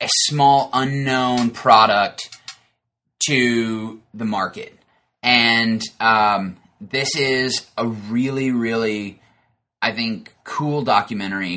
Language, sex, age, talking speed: English, male, 20-39, 95 wpm